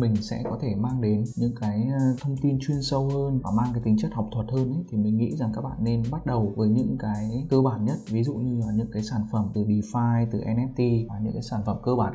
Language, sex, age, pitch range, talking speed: Vietnamese, male, 20-39, 105-125 Hz, 275 wpm